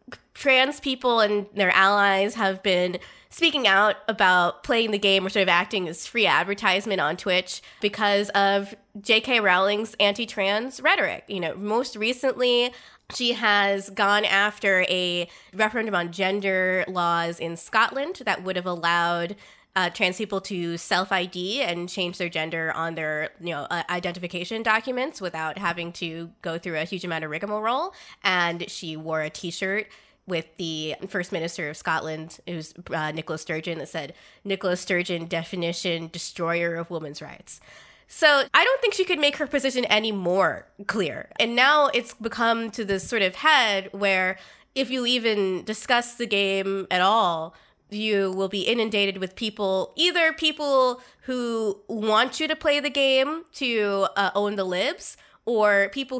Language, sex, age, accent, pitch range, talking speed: English, female, 20-39, American, 175-225 Hz, 160 wpm